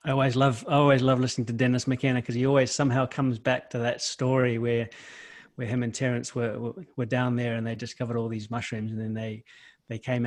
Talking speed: 230 wpm